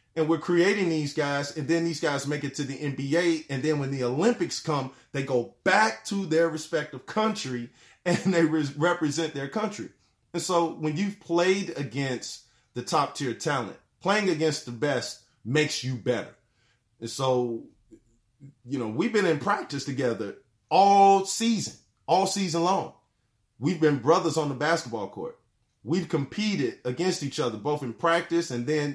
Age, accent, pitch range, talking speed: 30-49, American, 125-165 Hz, 165 wpm